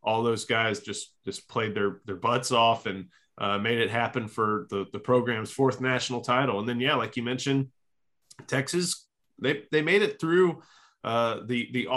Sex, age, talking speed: male, 30-49, 185 wpm